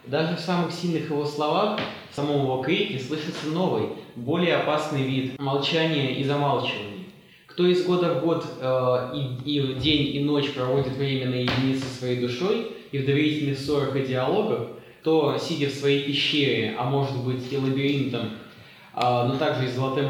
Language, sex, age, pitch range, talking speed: Russian, male, 20-39, 130-160 Hz, 165 wpm